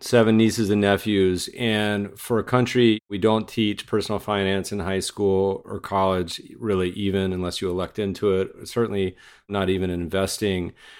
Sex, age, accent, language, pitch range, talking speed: male, 40-59, American, English, 90-105 Hz, 160 wpm